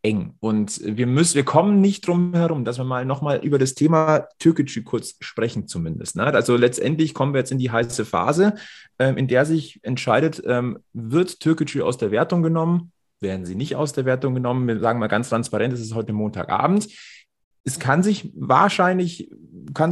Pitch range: 120-160 Hz